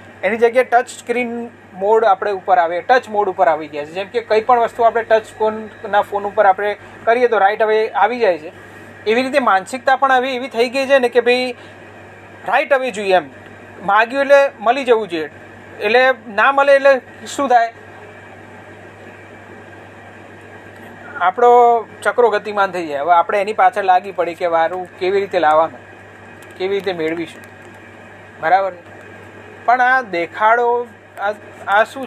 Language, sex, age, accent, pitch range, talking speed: Gujarati, male, 30-49, native, 150-240 Hz, 110 wpm